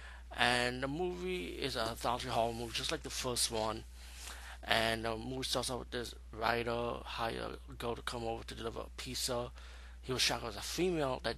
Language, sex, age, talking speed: English, male, 20-39, 210 wpm